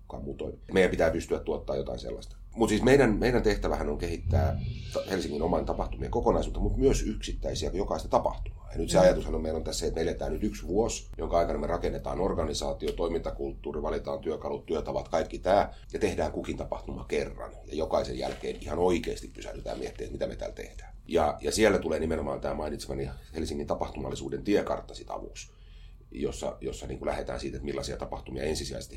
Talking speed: 170 wpm